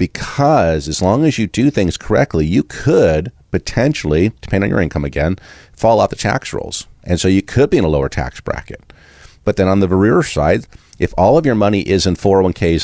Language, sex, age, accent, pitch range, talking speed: English, male, 40-59, American, 75-100 Hz, 210 wpm